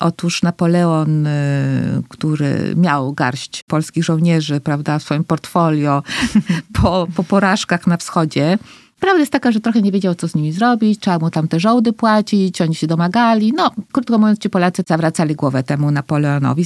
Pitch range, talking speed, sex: 165-210 Hz, 160 wpm, female